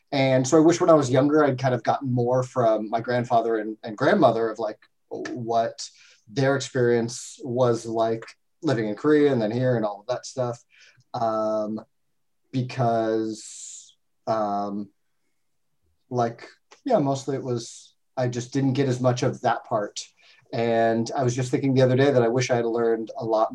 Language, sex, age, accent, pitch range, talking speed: English, male, 30-49, American, 115-145 Hz, 180 wpm